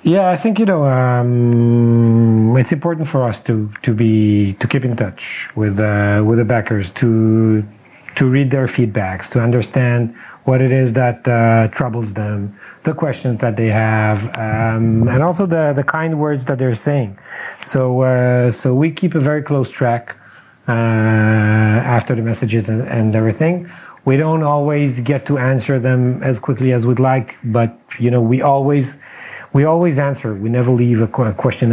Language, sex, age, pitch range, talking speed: English, male, 40-59, 110-135 Hz, 170 wpm